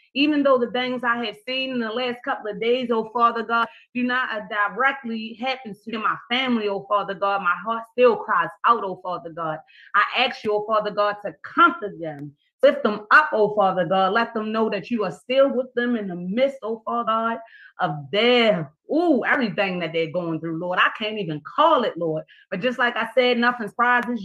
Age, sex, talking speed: 30-49, female, 215 wpm